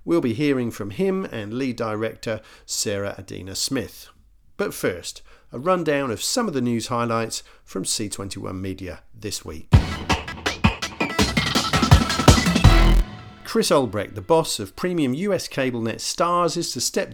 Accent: British